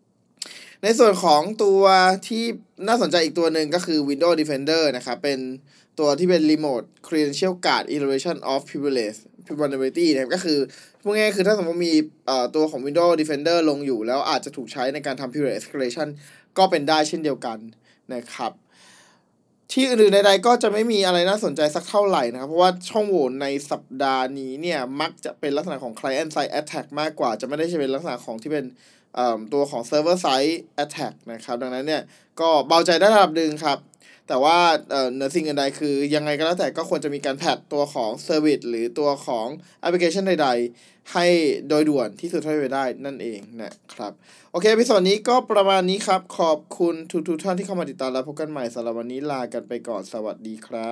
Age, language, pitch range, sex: 20-39, Thai, 135-175 Hz, male